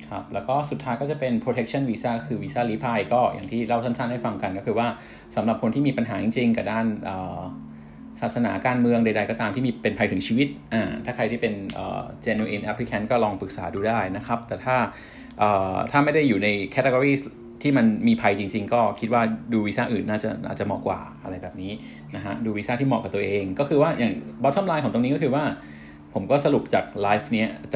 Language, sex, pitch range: Thai, male, 105-125 Hz